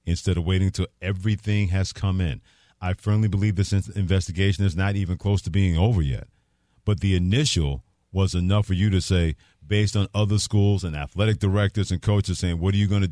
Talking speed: 200 wpm